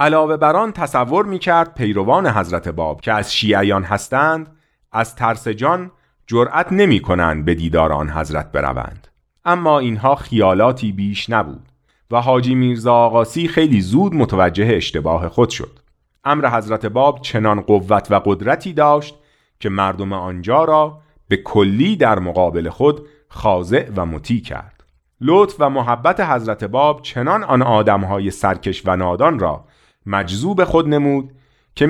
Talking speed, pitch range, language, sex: 140 wpm, 95-145 Hz, Persian, male